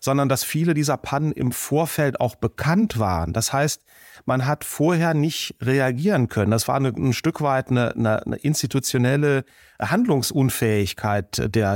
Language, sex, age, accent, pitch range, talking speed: German, male, 40-59, German, 125-150 Hz, 145 wpm